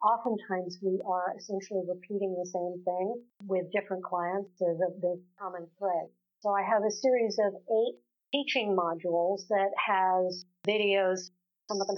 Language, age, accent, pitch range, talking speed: English, 50-69, American, 185-225 Hz, 150 wpm